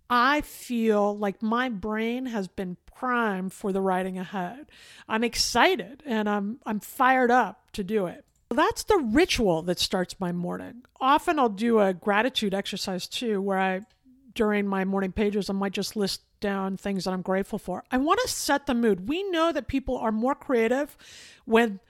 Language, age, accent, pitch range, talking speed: English, 50-69, American, 205-280 Hz, 185 wpm